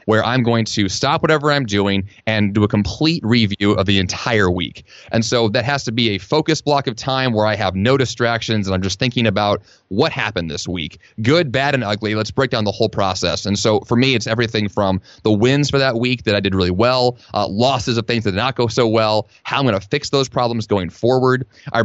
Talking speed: 245 wpm